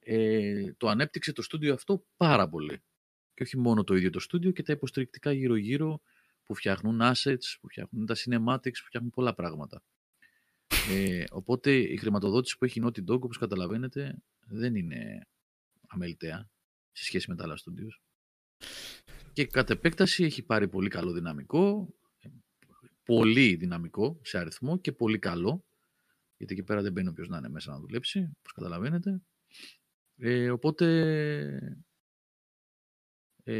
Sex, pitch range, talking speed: male, 95-145 Hz, 145 wpm